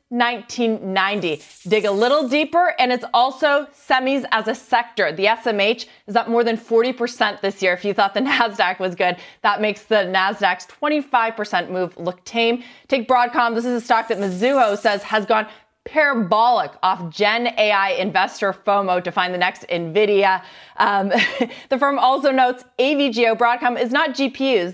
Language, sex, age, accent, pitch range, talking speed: English, female, 30-49, American, 190-240 Hz, 165 wpm